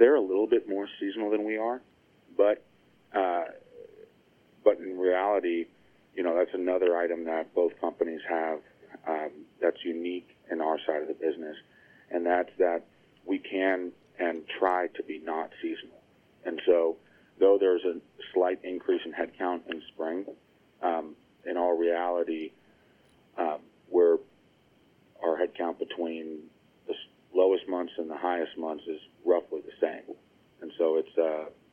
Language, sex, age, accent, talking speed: English, male, 40-59, American, 145 wpm